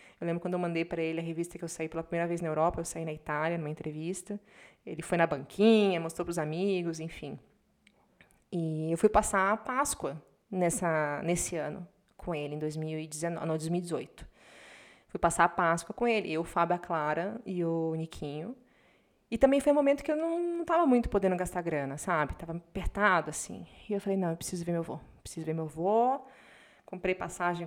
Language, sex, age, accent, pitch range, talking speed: Portuguese, female, 20-39, Brazilian, 165-225 Hz, 205 wpm